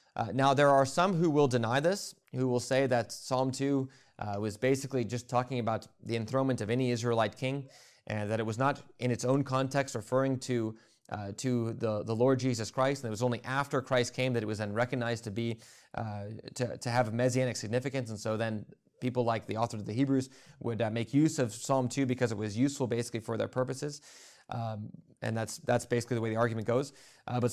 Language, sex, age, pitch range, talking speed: English, male, 20-39, 110-135 Hz, 225 wpm